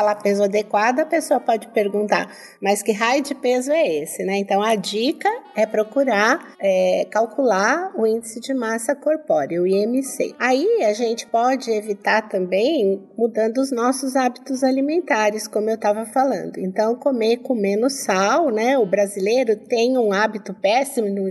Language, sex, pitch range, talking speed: Portuguese, female, 200-260 Hz, 155 wpm